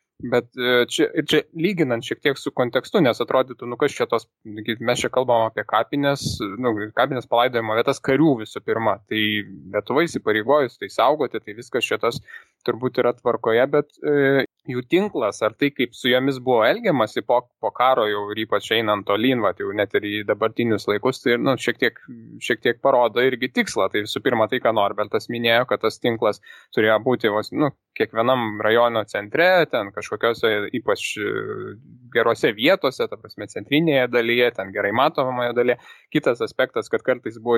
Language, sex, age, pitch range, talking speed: English, male, 20-39, 110-140 Hz, 170 wpm